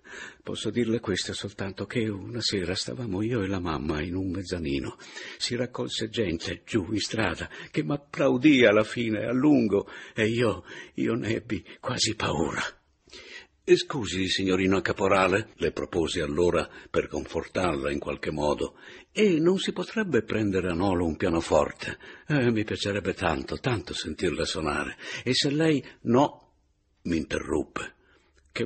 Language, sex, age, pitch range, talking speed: Italian, male, 60-79, 90-115 Hz, 145 wpm